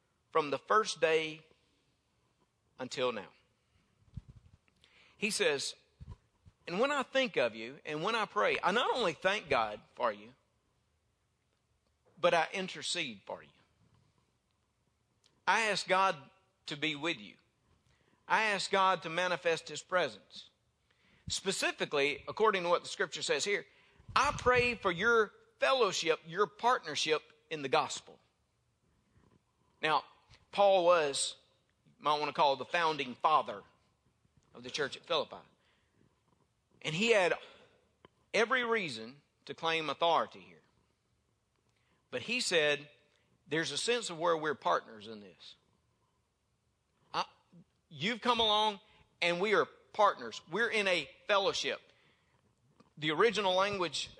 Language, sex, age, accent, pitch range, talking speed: English, male, 50-69, American, 155-215 Hz, 125 wpm